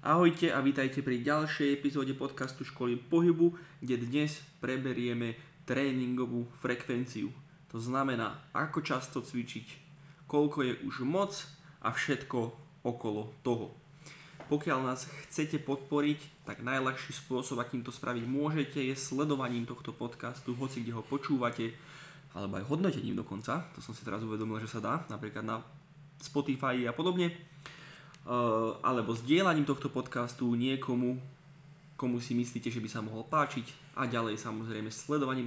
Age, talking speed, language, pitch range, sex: 20-39, 135 wpm, Slovak, 120-150 Hz, male